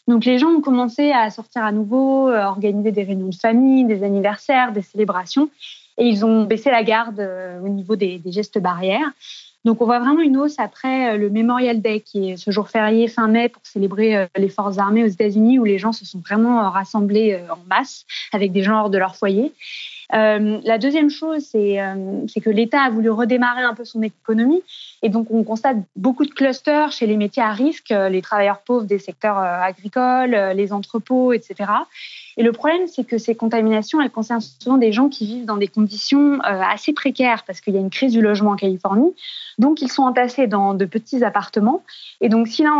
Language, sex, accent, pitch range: French, female, French, 205-260 Hz